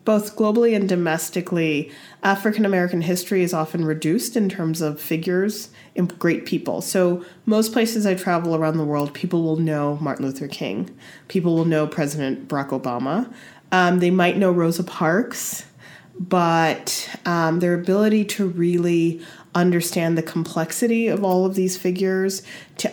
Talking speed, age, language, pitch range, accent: 150 wpm, 30-49, Finnish, 155-190 Hz, American